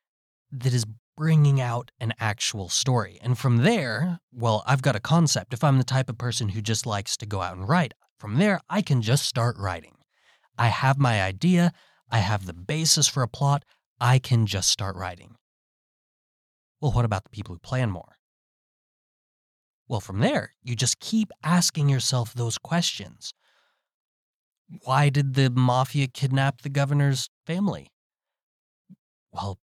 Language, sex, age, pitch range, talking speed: English, male, 20-39, 105-135 Hz, 160 wpm